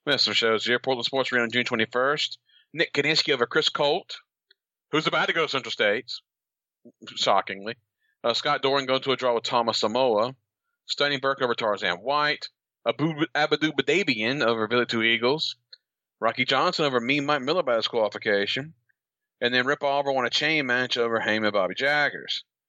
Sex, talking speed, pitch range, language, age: male, 175 wpm, 115-140 Hz, English, 40-59